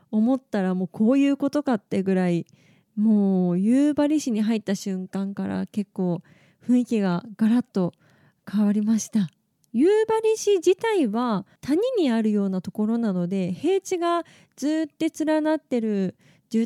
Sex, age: female, 20-39